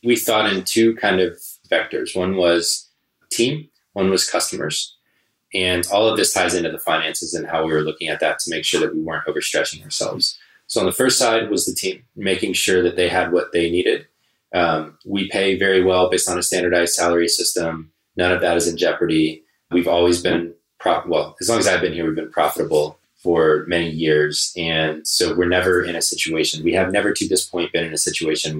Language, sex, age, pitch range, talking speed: English, male, 20-39, 80-95 Hz, 215 wpm